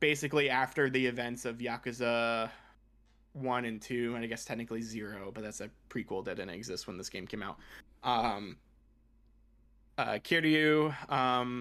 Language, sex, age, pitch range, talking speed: English, male, 20-39, 115-135 Hz, 155 wpm